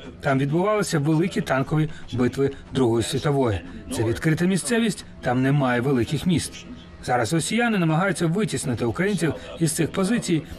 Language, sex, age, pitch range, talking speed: Ukrainian, male, 40-59, 115-170 Hz, 125 wpm